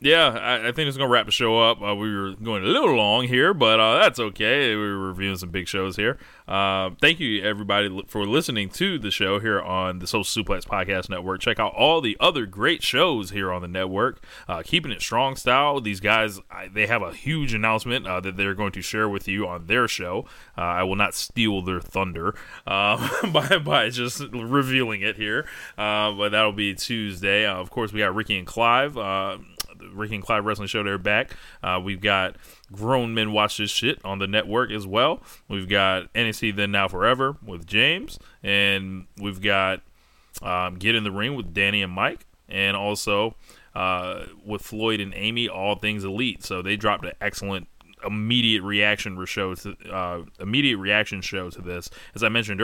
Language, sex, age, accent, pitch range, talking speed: English, male, 20-39, American, 95-110 Hz, 195 wpm